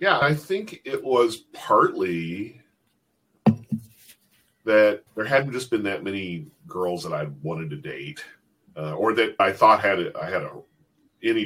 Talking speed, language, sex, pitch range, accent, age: 155 wpm, English, male, 90-135 Hz, American, 40-59